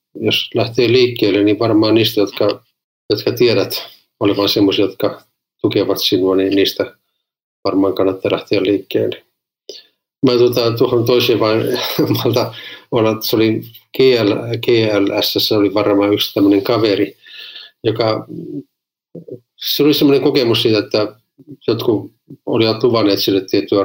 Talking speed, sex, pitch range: 120 wpm, male, 105-150 Hz